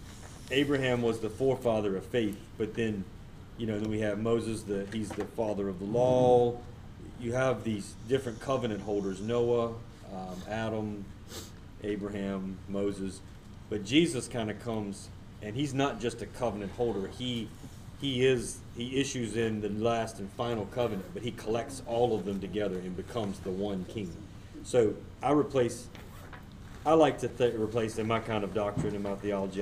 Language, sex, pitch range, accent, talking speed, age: English, male, 100-115 Hz, American, 170 wpm, 40-59